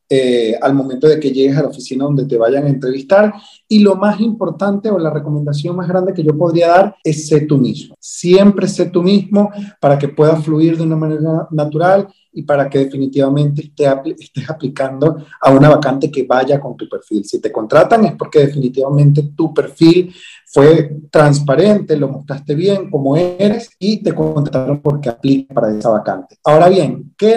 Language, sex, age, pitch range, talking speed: English, male, 30-49, 140-175 Hz, 185 wpm